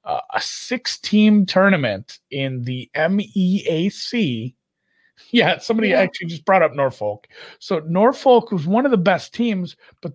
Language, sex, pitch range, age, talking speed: English, male, 120-185 Hz, 30-49, 135 wpm